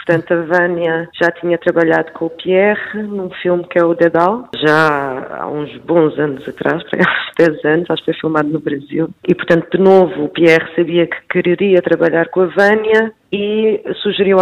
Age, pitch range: 20-39, 160-180 Hz